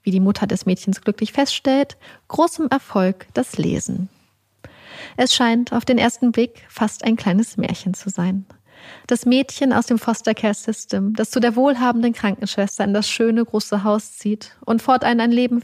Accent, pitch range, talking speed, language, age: German, 200-240 Hz, 170 wpm, German, 30-49